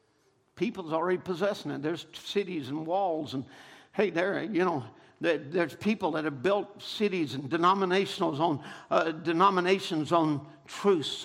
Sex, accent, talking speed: male, American, 130 wpm